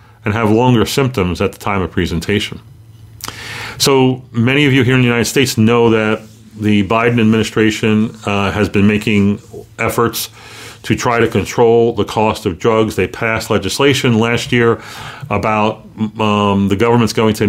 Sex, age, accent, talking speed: male, 40-59, American, 160 wpm